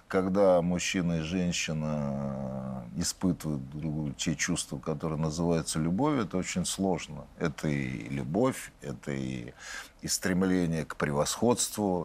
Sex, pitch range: male, 70-95 Hz